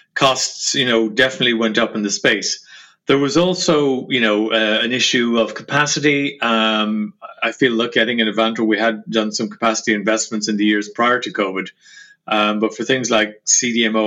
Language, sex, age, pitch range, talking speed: English, male, 30-49, 110-130 Hz, 195 wpm